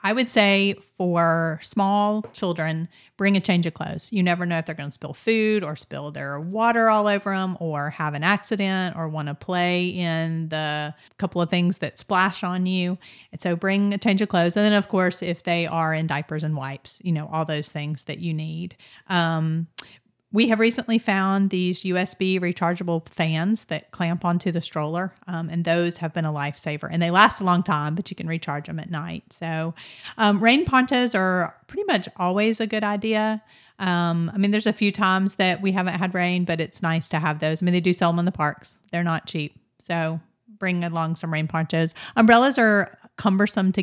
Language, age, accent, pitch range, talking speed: English, 40-59, American, 160-200 Hz, 210 wpm